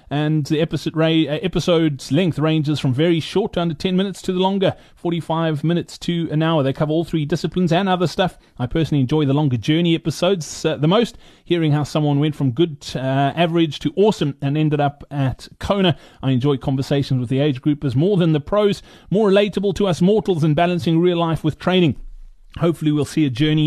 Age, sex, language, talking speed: 30-49, male, English, 205 wpm